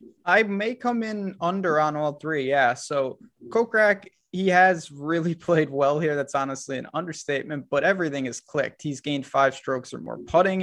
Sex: male